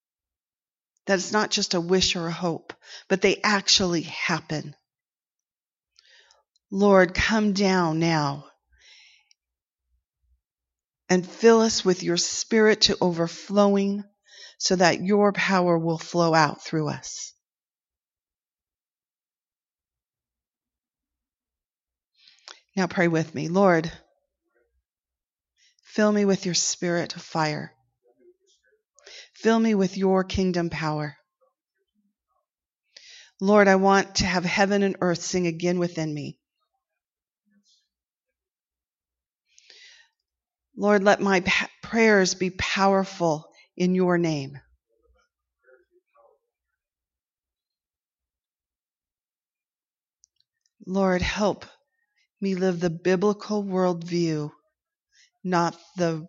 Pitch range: 165-205 Hz